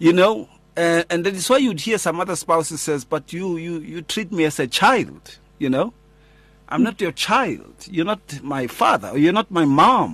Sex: male